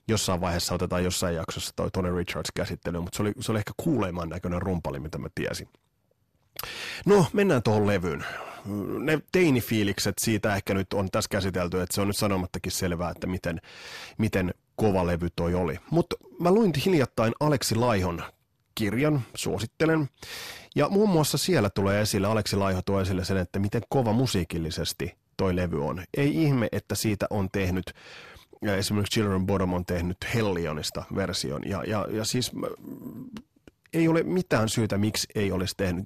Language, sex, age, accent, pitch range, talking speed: Finnish, male, 30-49, native, 90-125 Hz, 160 wpm